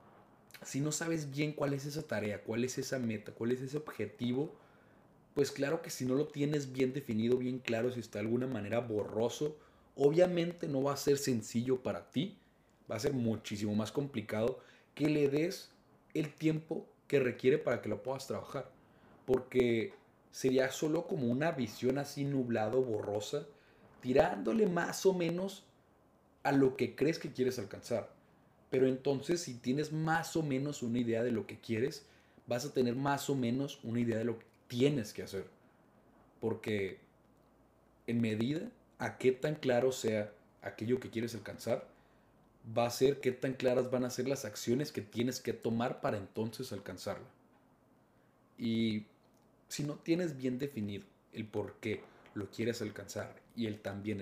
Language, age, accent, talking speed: Spanish, 30-49, Mexican, 165 wpm